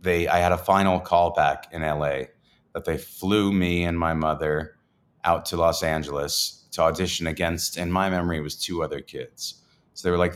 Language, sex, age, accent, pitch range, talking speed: English, male, 30-49, American, 80-95 Hz, 190 wpm